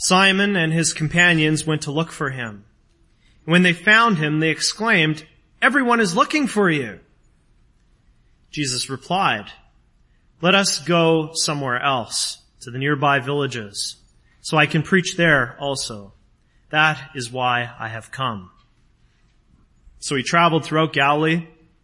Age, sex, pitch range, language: 30-49, male, 140-195 Hz, English